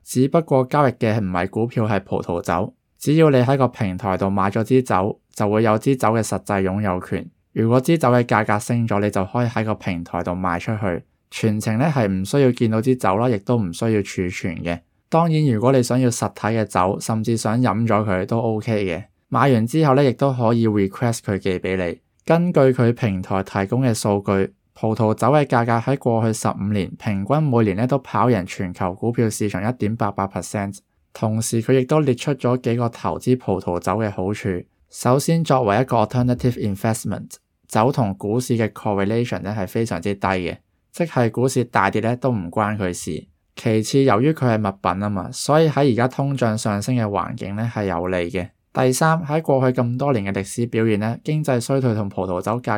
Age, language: 20-39, Chinese